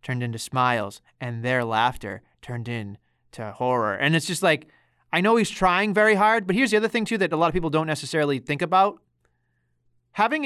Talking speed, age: 200 wpm, 30-49